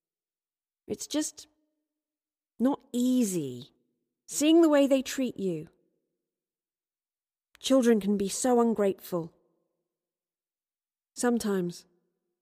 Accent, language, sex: British, English, female